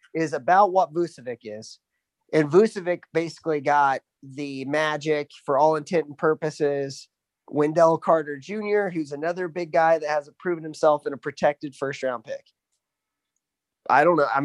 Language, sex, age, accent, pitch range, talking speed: English, male, 30-49, American, 150-205 Hz, 150 wpm